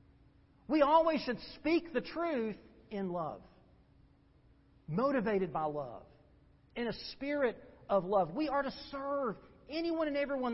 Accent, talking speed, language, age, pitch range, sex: American, 130 wpm, English, 40-59, 180-250 Hz, male